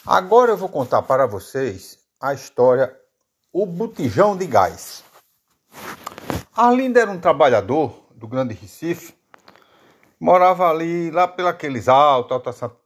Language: Portuguese